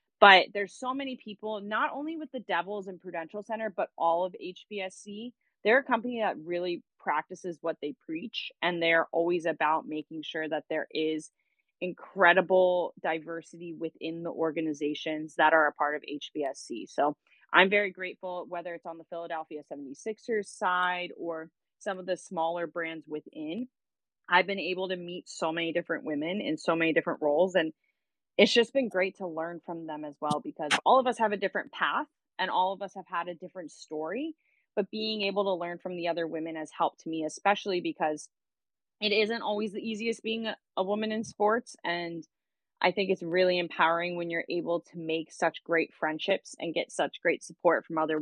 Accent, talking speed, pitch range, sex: American, 190 wpm, 165-205 Hz, female